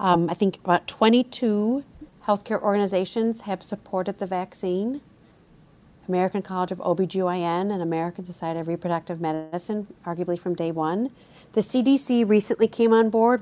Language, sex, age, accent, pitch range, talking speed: English, female, 40-59, American, 175-210 Hz, 140 wpm